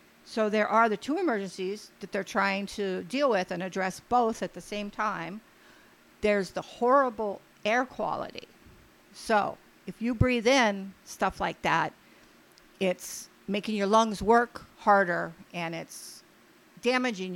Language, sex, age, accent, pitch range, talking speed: English, female, 50-69, American, 180-215 Hz, 140 wpm